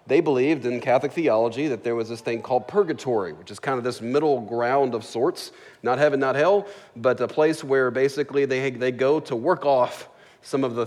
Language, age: English, 40-59